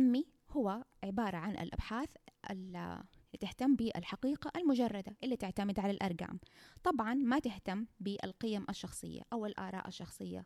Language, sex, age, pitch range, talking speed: Arabic, female, 20-39, 195-260 Hz, 115 wpm